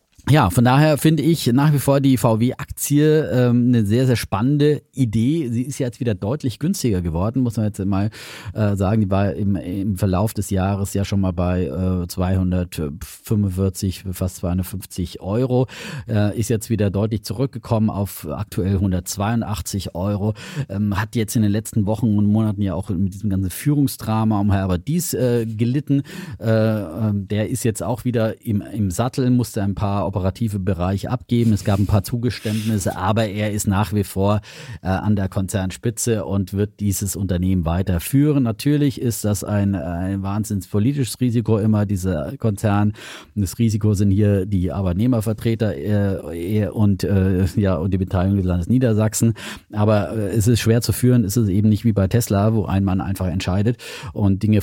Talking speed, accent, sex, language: 170 wpm, German, male, German